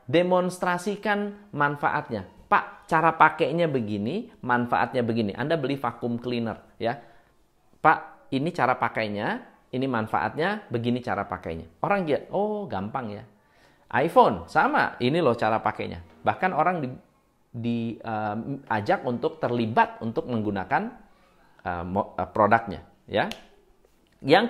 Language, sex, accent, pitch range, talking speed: Indonesian, male, native, 110-155 Hz, 115 wpm